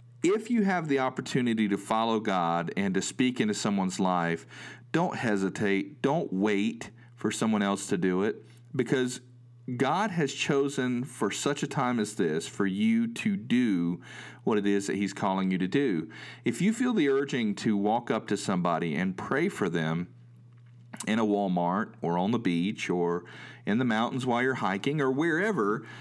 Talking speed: 180 wpm